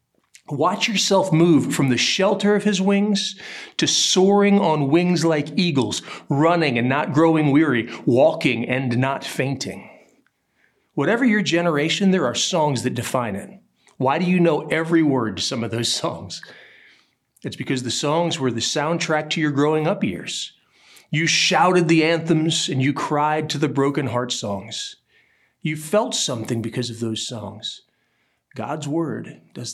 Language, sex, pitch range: English, male, 130-180 Hz